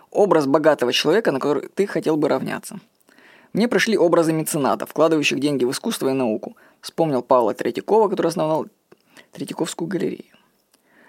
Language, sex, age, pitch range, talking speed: Russian, female, 20-39, 155-200 Hz, 140 wpm